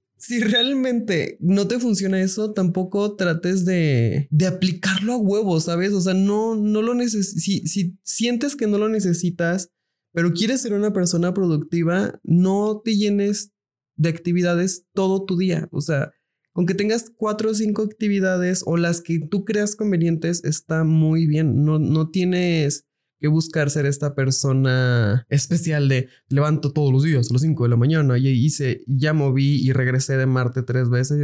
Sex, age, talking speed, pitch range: male, 20-39, 175 wpm, 135-180 Hz